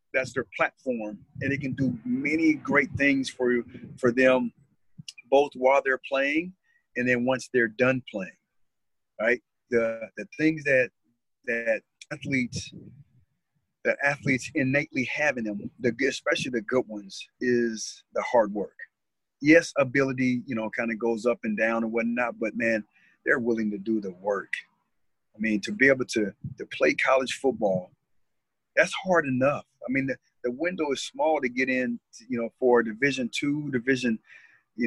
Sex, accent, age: male, American, 40-59